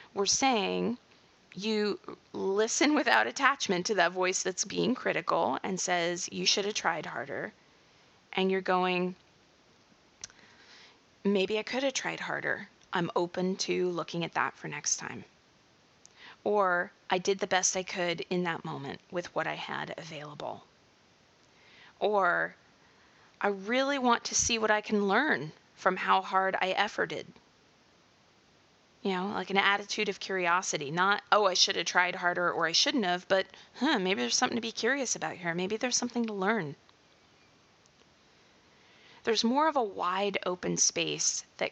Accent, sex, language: American, female, English